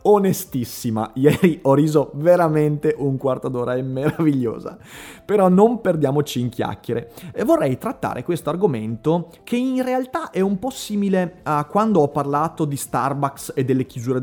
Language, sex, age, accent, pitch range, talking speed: Italian, male, 30-49, native, 125-195 Hz, 150 wpm